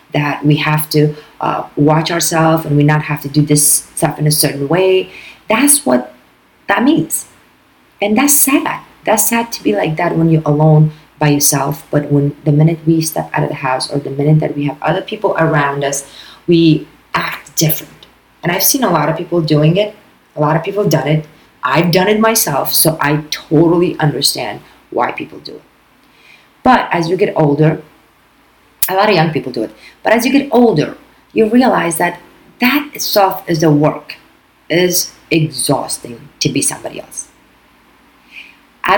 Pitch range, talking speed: 150-175 Hz, 185 wpm